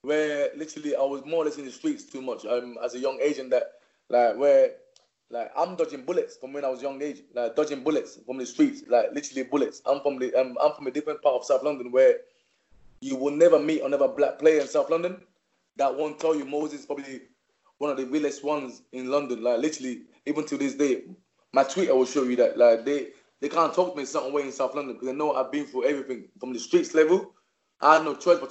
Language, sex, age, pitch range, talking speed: English, male, 20-39, 135-175 Hz, 245 wpm